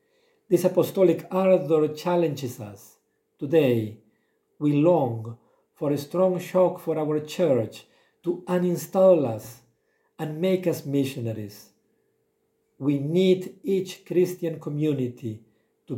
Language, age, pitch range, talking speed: English, 50-69, 130-175 Hz, 105 wpm